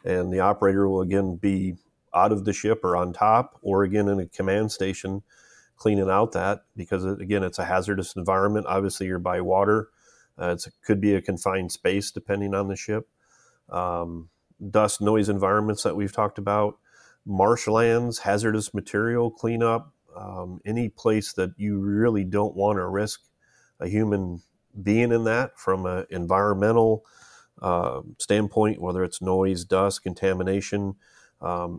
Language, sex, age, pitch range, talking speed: English, male, 40-59, 95-105 Hz, 155 wpm